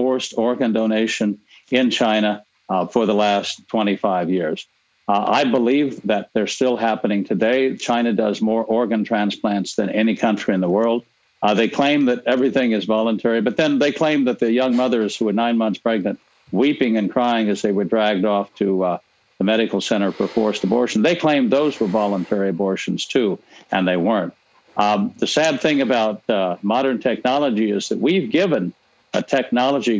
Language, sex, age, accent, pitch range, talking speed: English, male, 60-79, American, 105-125 Hz, 180 wpm